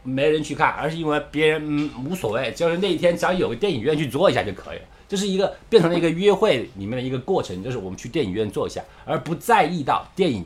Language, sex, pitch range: Chinese, male, 110-185 Hz